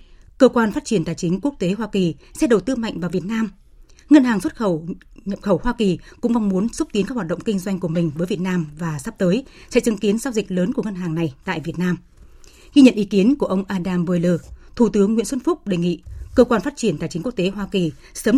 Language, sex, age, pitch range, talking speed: Vietnamese, female, 20-39, 180-235 Hz, 270 wpm